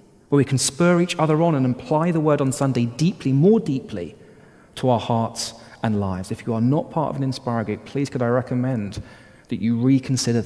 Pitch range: 125-160 Hz